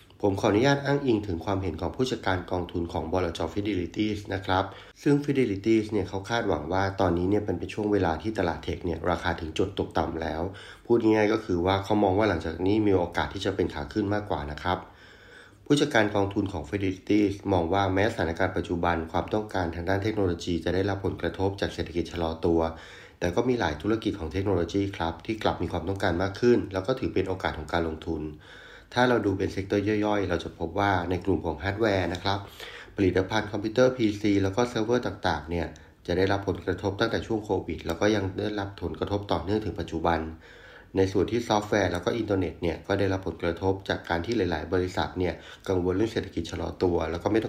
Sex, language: male, Thai